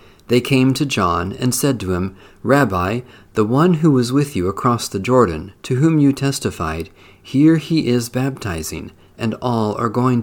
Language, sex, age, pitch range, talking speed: English, male, 50-69, 95-130 Hz, 175 wpm